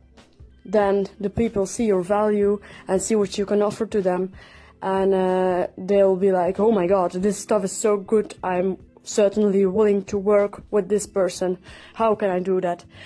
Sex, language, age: female, English, 20-39